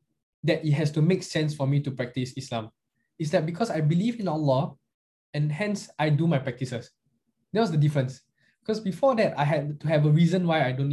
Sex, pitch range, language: male, 135-175 Hz, English